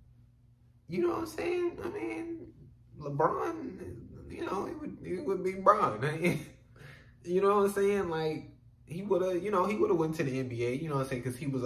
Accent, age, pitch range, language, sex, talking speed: American, 20-39, 120-165 Hz, English, male, 225 wpm